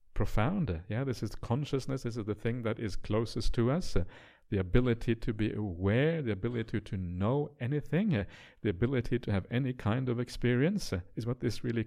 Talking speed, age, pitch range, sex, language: 200 wpm, 50-69, 105-130 Hz, male, English